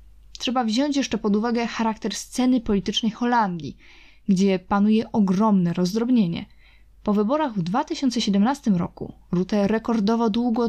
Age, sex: 20-39, female